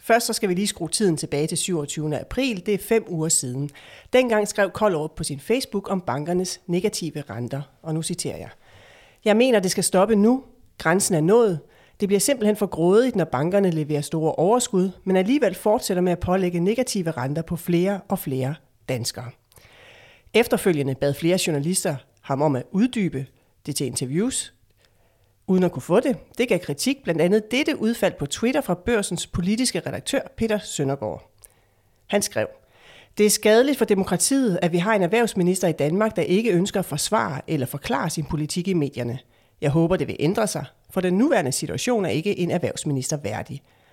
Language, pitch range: Danish, 145-205 Hz